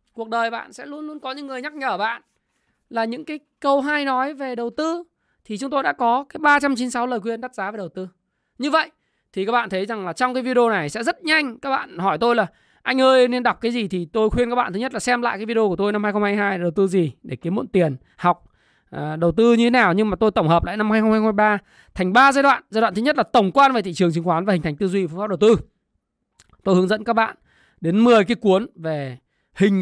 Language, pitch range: Vietnamese, 190-255 Hz